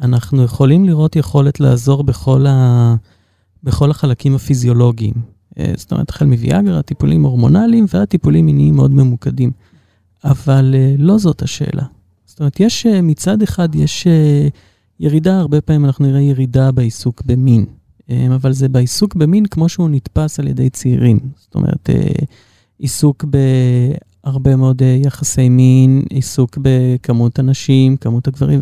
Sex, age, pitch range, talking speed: male, 30-49, 120-150 Hz, 125 wpm